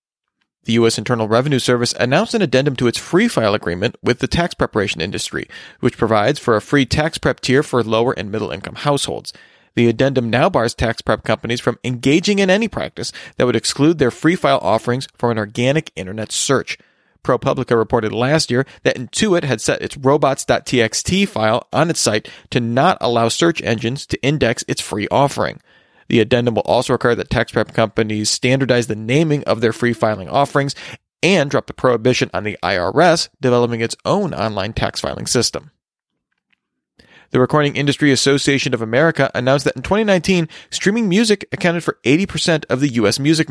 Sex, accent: male, American